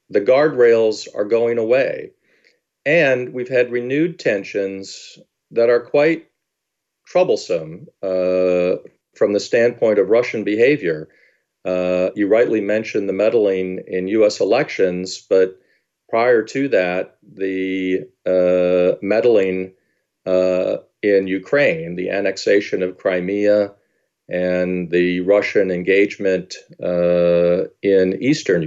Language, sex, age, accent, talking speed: English, male, 40-59, American, 105 wpm